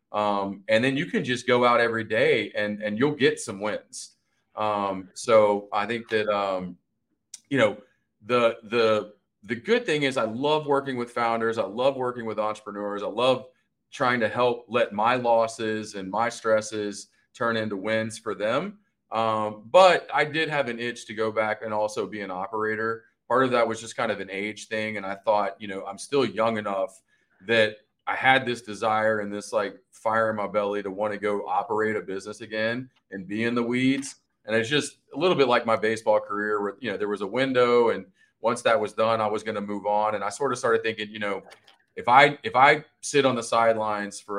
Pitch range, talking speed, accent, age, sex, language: 105-120 Hz, 215 wpm, American, 30-49, male, English